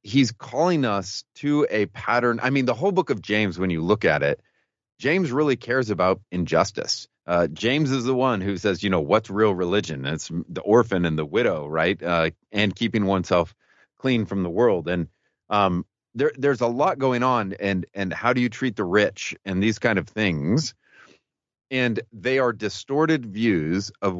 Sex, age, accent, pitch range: male, 30-49, American, 90-120 Hz